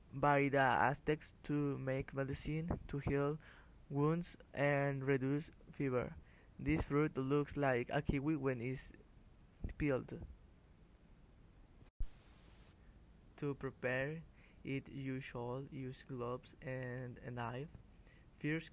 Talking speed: 105 wpm